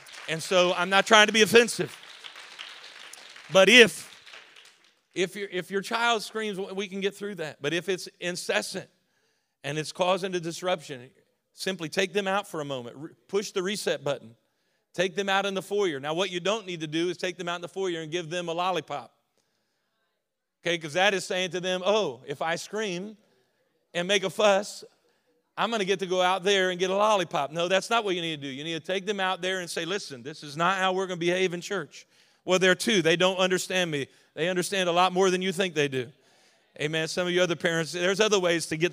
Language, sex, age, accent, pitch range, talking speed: English, male, 40-59, American, 165-195 Hz, 235 wpm